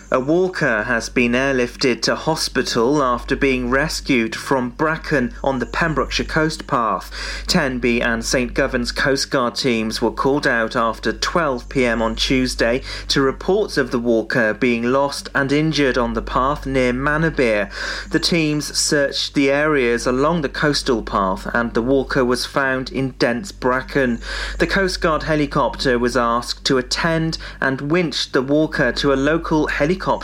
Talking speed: 155 wpm